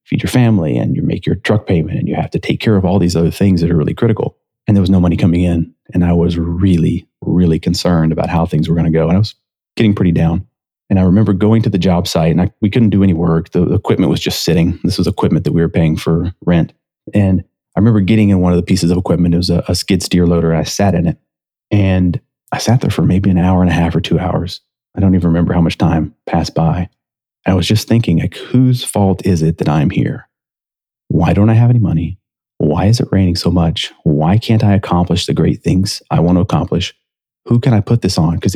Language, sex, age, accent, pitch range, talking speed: English, male, 30-49, American, 85-105 Hz, 255 wpm